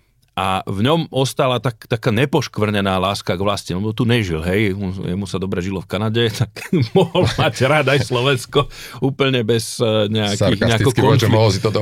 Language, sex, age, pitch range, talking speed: Slovak, male, 40-59, 95-120 Hz, 145 wpm